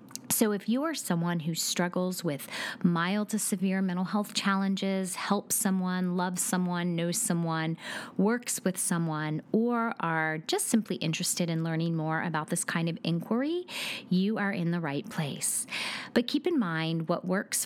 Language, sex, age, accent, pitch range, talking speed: English, female, 30-49, American, 165-220 Hz, 165 wpm